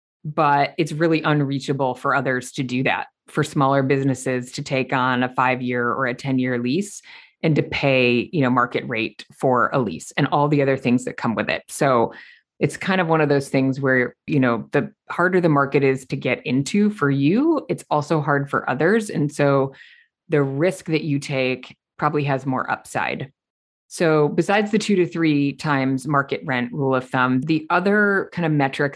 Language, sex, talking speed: English, female, 200 wpm